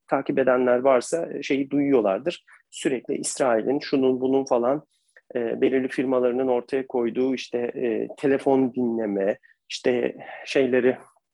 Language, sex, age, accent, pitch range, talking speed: Turkish, male, 40-59, native, 120-135 Hz, 110 wpm